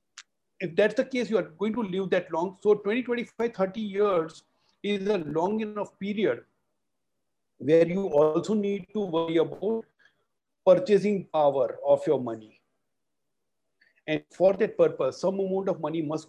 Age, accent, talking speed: 50-69, native, 155 wpm